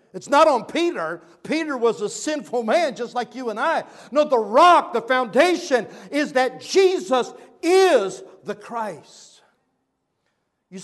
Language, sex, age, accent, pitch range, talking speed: English, male, 50-69, American, 185-235 Hz, 145 wpm